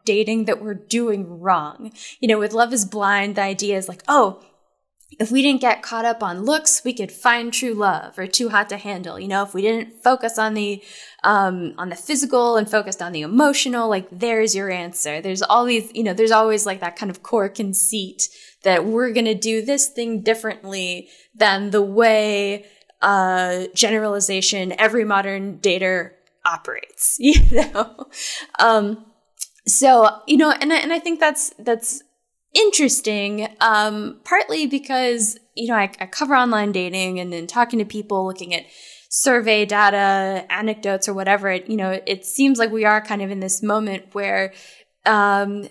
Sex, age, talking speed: female, 10-29, 175 wpm